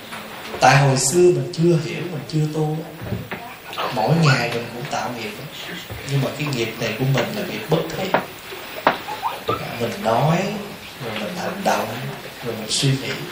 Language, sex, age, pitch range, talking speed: Vietnamese, male, 20-39, 130-175 Hz, 160 wpm